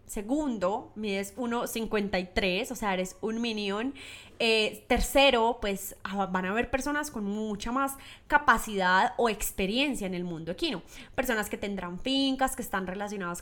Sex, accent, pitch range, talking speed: female, Colombian, 195-265 Hz, 145 wpm